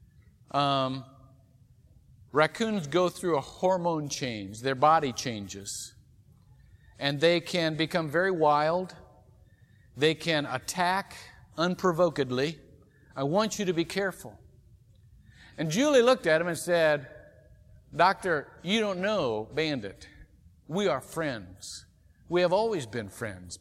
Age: 50-69